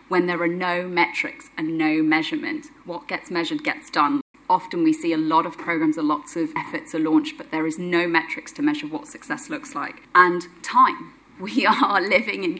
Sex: female